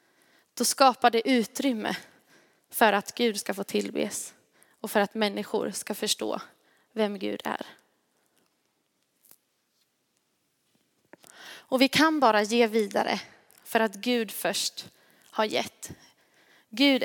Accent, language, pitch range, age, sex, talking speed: native, Swedish, 205-235 Hz, 20-39, female, 115 wpm